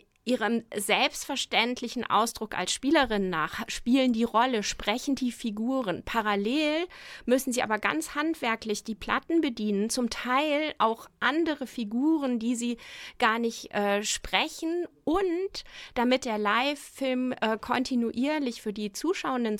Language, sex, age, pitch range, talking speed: German, female, 30-49, 205-255 Hz, 120 wpm